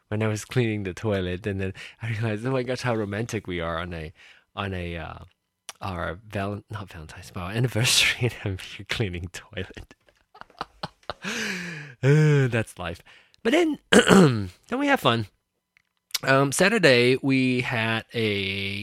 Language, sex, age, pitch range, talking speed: English, male, 20-39, 95-125 Hz, 150 wpm